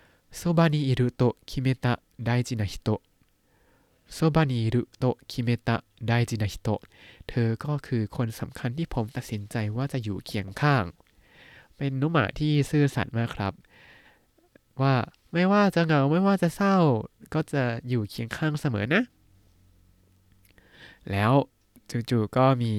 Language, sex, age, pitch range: Thai, male, 20-39, 110-145 Hz